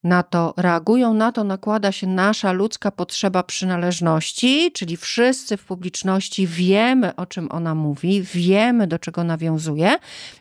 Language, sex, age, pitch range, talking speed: Polish, female, 40-59, 160-195 Hz, 145 wpm